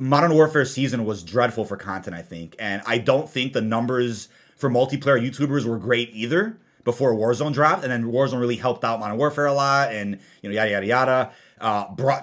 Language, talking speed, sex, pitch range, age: English, 205 wpm, male, 115-140 Hz, 30-49